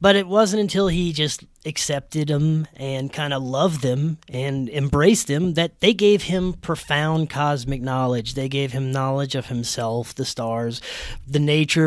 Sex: male